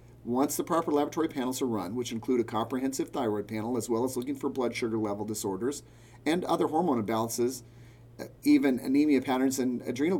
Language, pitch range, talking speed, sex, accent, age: English, 120-140 Hz, 180 wpm, male, American, 40-59